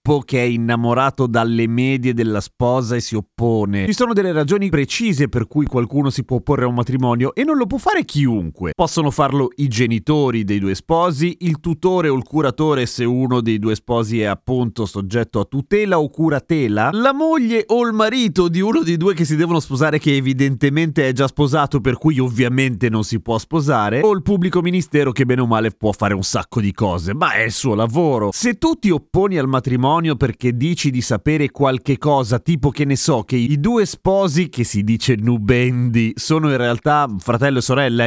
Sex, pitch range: male, 120-160 Hz